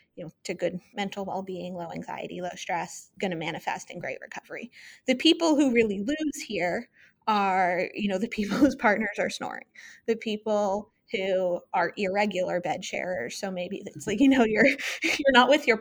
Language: English